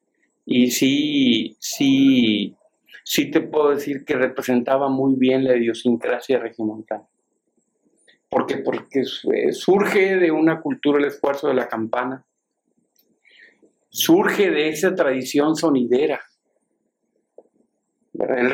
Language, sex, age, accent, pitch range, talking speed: Spanish, male, 50-69, Mexican, 125-170 Hz, 100 wpm